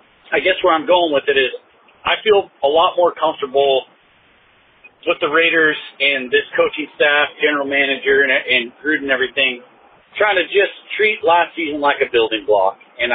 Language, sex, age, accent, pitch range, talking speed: English, male, 40-59, American, 145-205 Hz, 180 wpm